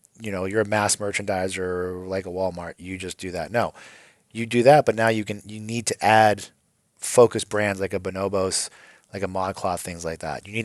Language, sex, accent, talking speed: English, male, American, 215 wpm